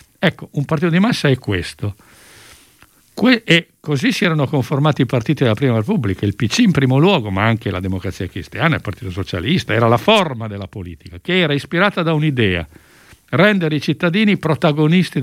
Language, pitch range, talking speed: Italian, 110-165 Hz, 175 wpm